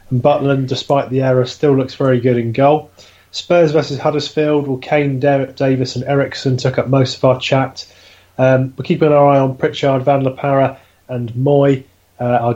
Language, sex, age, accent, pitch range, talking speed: English, male, 30-49, British, 125-145 Hz, 190 wpm